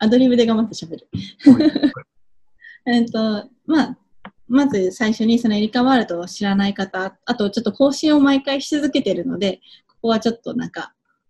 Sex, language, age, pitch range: female, Japanese, 20-39, 190-245 Hz